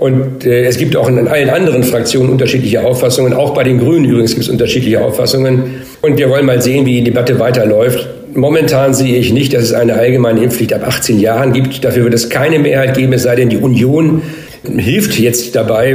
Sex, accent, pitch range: male, German, 120-135 Hz